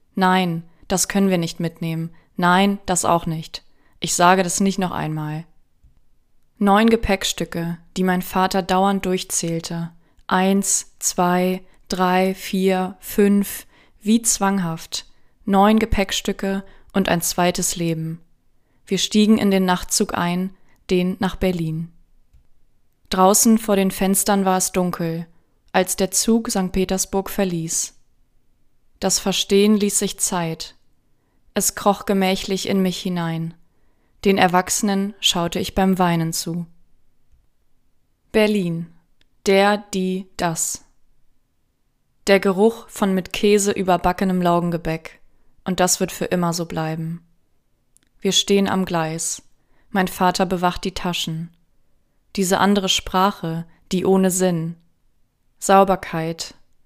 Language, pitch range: German, 170-195 Hz